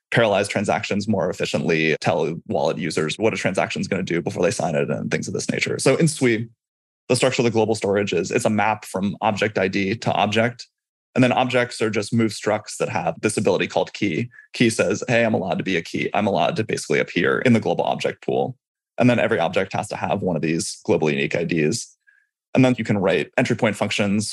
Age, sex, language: 20-39, male, English